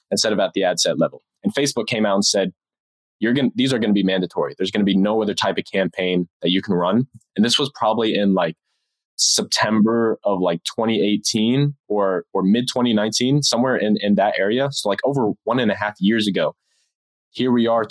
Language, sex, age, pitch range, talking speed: English, male, 20-39, 95-110 Hz, 210 wpm